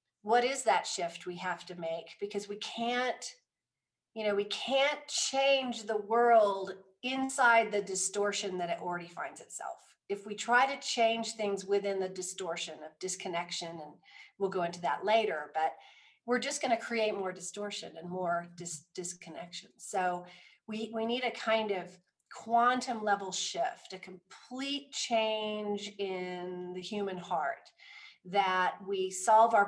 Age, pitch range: 40-59, 180-230 Hz